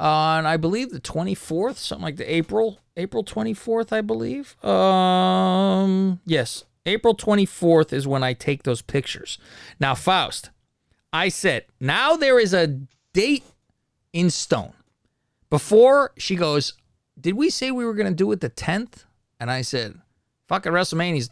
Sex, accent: male, American